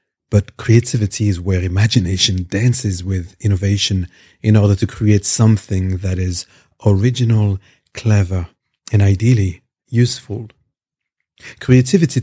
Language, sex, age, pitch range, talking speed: English, male, 50-69, 95-120 Hz, 105 wpm